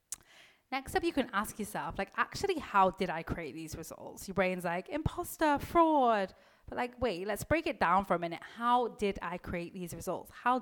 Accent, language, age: British, English, 20-39